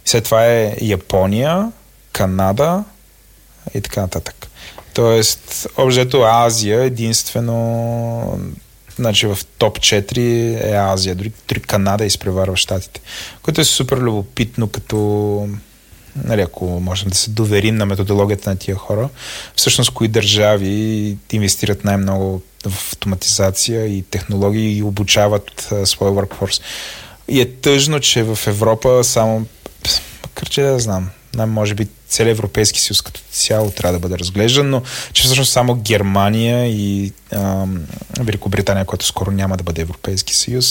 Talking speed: 135 wpm